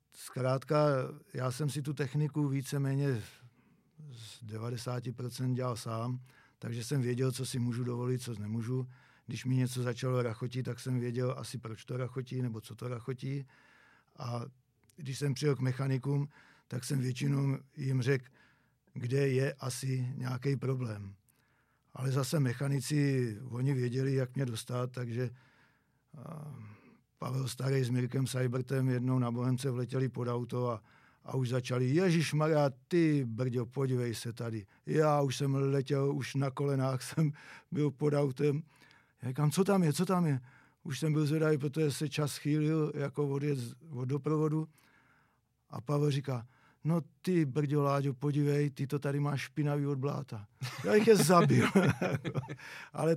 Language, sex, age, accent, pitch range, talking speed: Czech, male, 50-69, native, 125-145 Hz, 150 wpm